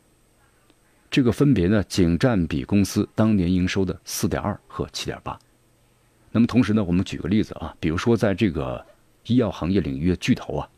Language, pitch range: Chinese, 80-105 Hz